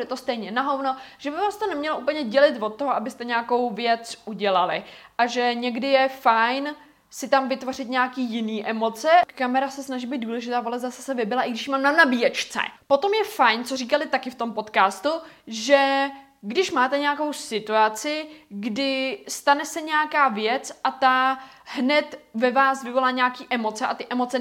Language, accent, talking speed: Czech, native, 175 wpm